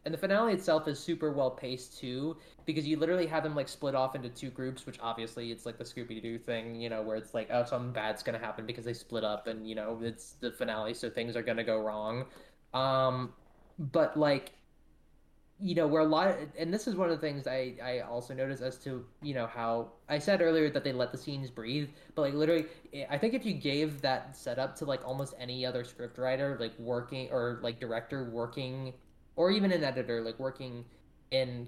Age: 20-39